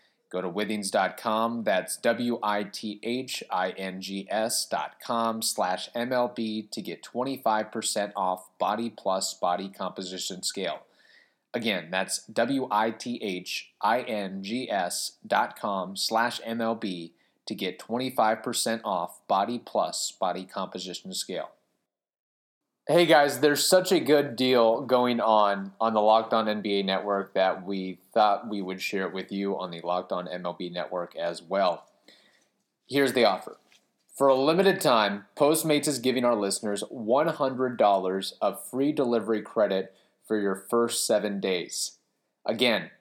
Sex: male